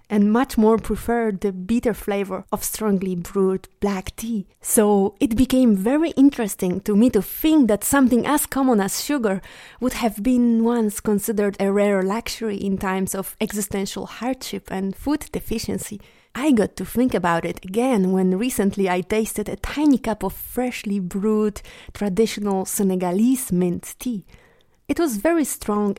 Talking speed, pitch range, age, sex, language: 155 wpm, 190-245 Hz, 20-39, female, English